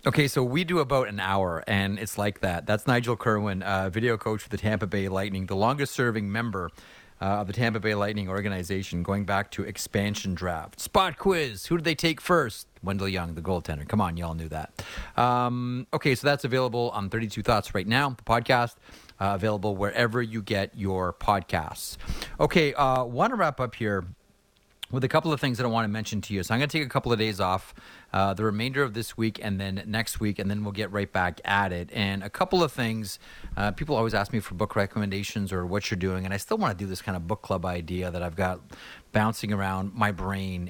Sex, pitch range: male, 95-120 Hz